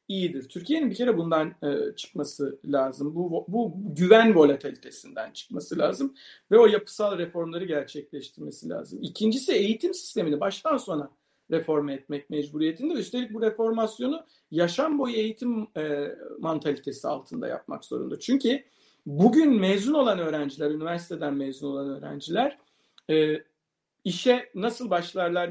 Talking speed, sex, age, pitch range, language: 120 wpm, male, 50-69, 150-250 Hz, Turkish